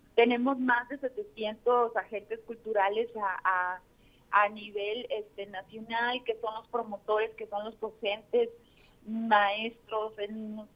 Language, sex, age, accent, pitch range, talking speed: Spanish, female, 30-49, Mexican, 205-245 Hz, 130 wpm